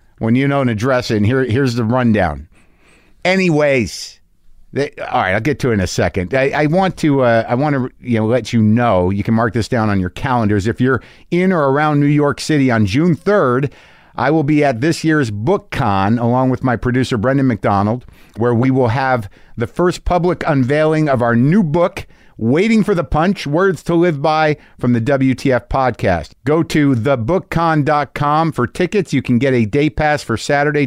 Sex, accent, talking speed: male, American, 205 wpm